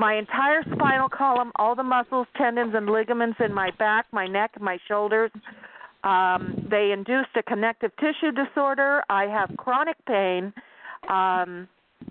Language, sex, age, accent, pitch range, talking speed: English, female, 40-59, American, 200-255 Hz, 145 wpm